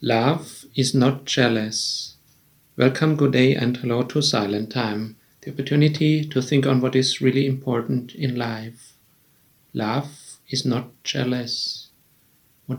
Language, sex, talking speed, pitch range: English, male, 130 wpm, 125-145 Hz